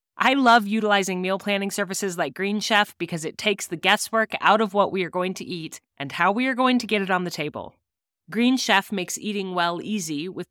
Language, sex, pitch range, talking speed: English, female, 170-215 Hz, 230 wpm